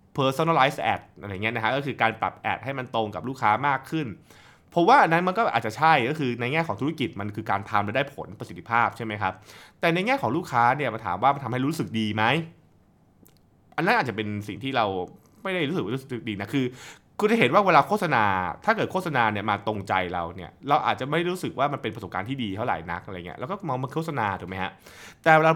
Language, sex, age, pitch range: Thai, male, 20-39, 100-140 Hz